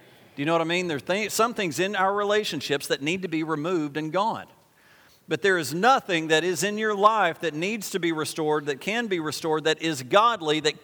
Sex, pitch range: male, 165-220 Hz